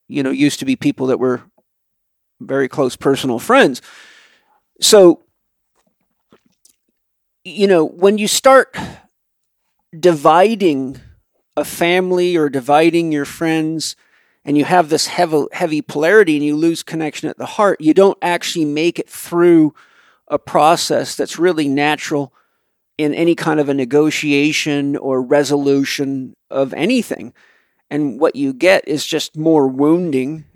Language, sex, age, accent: English, male, 40-59, American